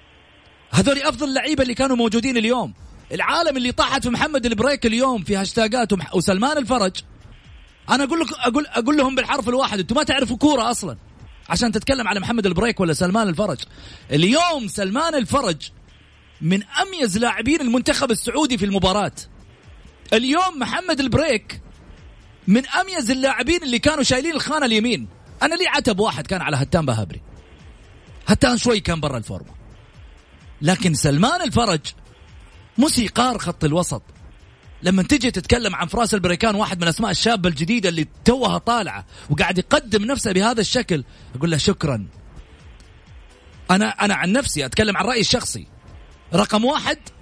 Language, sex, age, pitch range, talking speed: English, male, 30-49, 160-250 Hz, 140 wpm